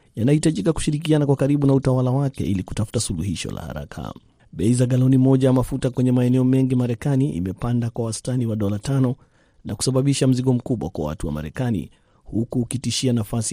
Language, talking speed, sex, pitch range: Swahili, 175 wpm, male, 110-130 Hz